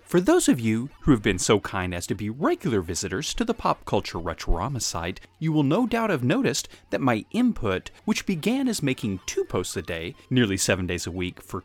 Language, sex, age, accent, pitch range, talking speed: English, male, 30-49, American, 95-150 Hz, 220 wpm